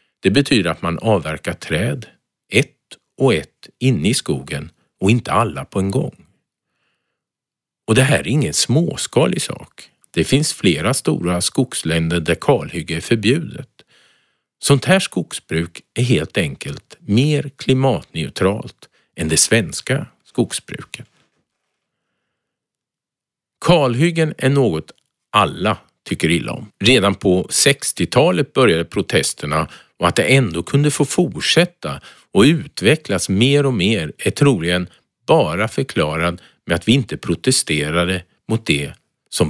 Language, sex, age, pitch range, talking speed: Swedish, male, 50-69, 90-145 Hz, 125 wpm